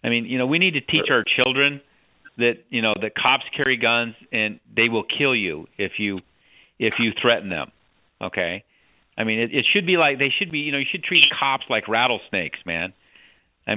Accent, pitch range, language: American, 120-145 Hz, English